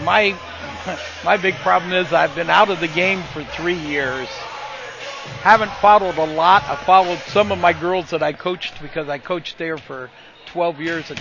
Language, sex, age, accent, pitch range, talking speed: English, male, 60-79, American, 150-185 Hz, 185 wpm